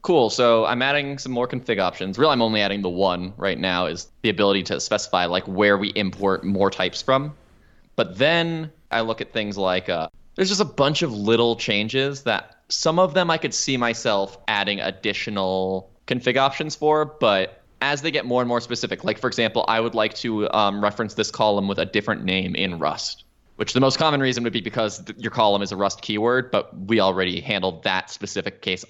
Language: English